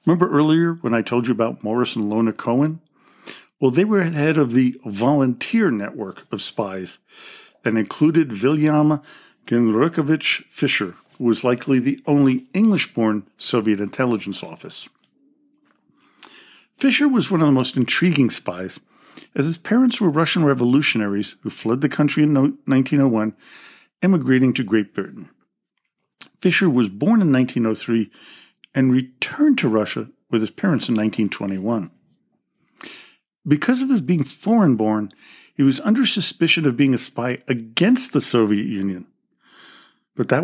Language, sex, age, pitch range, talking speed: English, male, 50-69, 115-165 Hz, 135 wpm